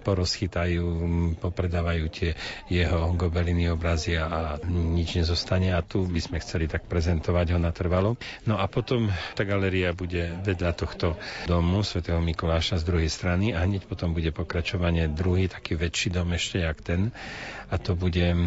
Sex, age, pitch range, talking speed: male, 40-59, 85-95 Hz, 155 wpm